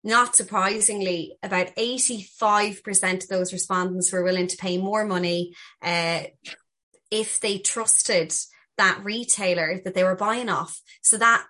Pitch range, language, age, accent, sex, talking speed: 190-220 Hz, English, 20-39, Irish, female, 135 wpm